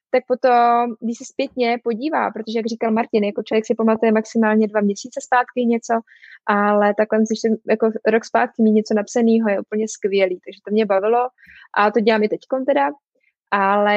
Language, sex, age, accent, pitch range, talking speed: Czech, female, 20-39, native, 205-230 Hz, 185 wpm